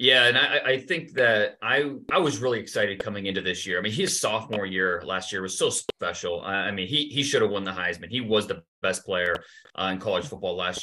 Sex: male